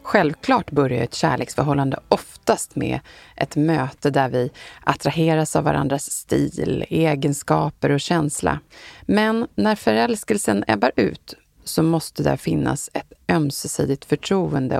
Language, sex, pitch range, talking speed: Swedish, female, 140-165 Hz, 120 wpm